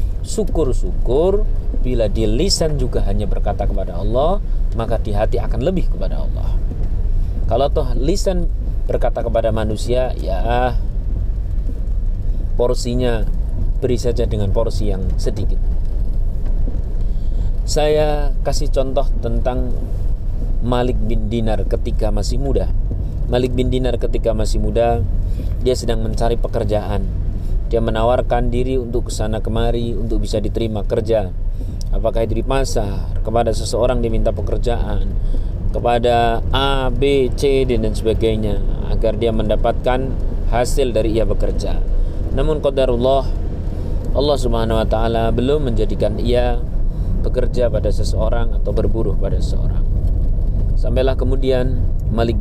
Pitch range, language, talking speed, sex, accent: 95-120 Hz, Indonesian, 115 wpm, male, native